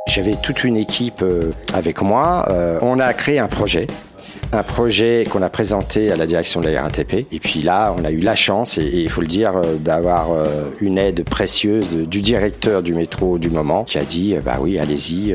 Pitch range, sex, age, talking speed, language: 85-110 Hz, male, 40-59, 205 wpm, French